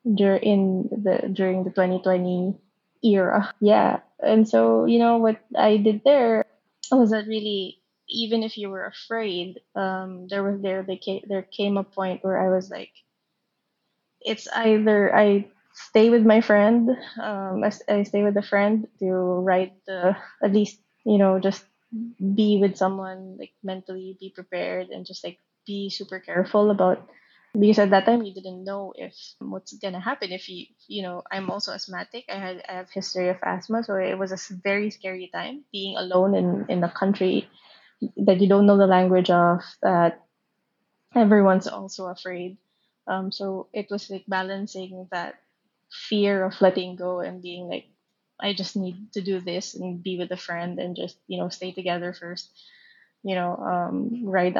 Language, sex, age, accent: Chinese, female, 20-39, Filipino